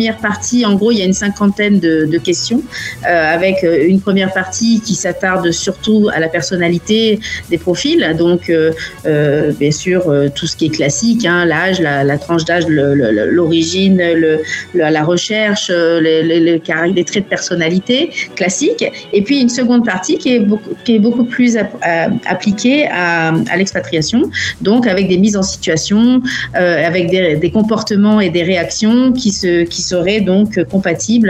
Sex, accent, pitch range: female, French, 165-205 Hz